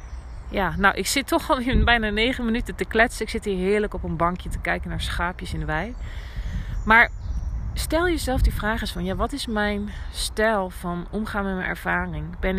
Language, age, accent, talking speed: Dutch, 40-59, Dutch, 210 wpm